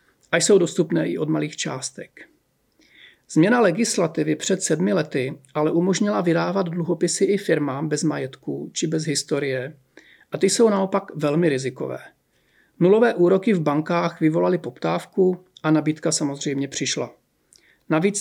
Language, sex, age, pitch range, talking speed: Czech, male, 40-59, 155-185 Hz, 130 wpm